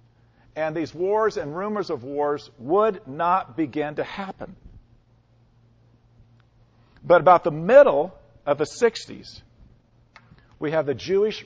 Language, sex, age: English, male, 50-69